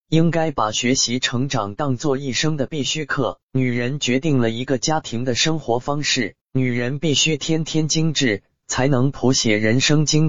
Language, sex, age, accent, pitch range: Chinese, male, 20-39, native, 120-150 Hz